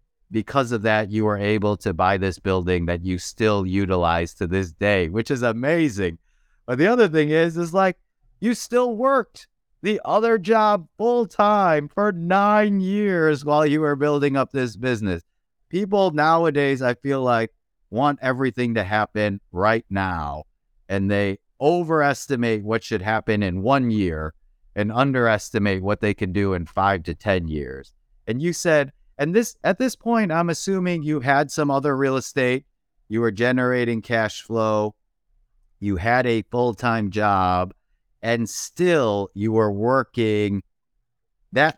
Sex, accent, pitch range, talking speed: male, American, 100-145 Hz, 155 wpm